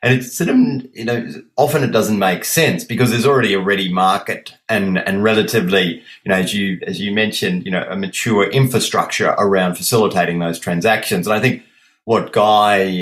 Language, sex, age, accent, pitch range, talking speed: English, male, 30-49, Australian, 90-115 Hz, 180 wpm